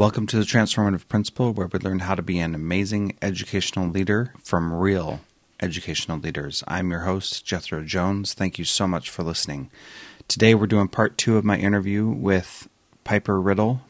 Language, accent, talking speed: English, American, 175 wpm